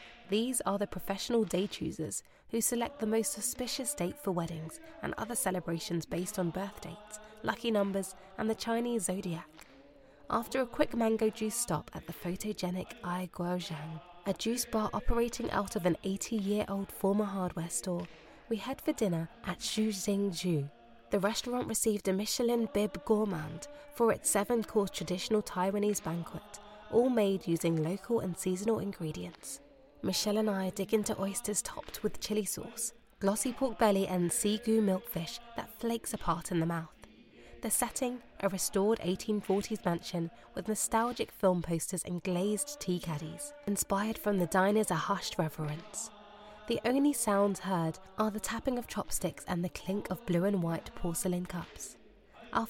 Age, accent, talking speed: 20-39, British, 155 wpm